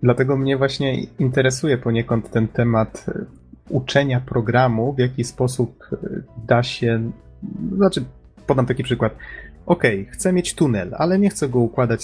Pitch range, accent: 110-130 Hz, native